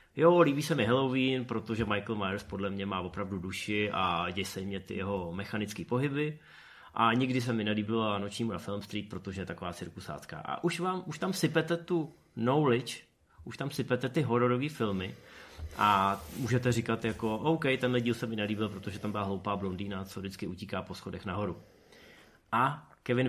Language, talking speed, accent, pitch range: Czech, 185 wpm, native, 100-130 Hz